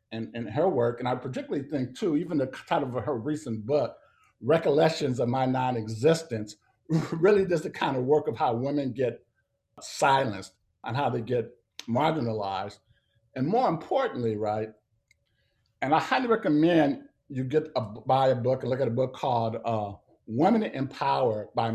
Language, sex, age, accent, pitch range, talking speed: English, male, 50-69, American, 115-150 Hz, 165 wpm